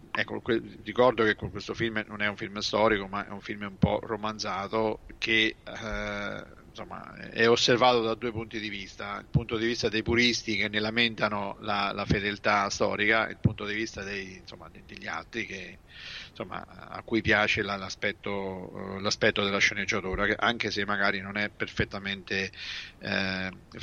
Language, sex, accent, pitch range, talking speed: Italian, male, native, 100-115 Hz, 165 wpm